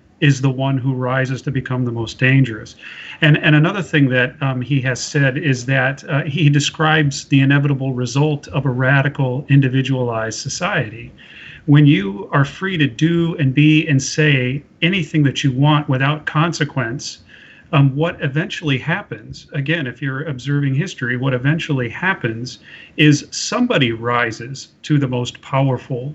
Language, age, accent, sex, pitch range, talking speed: English, 40-59, American, male, 130-150 Hz, 155 wpm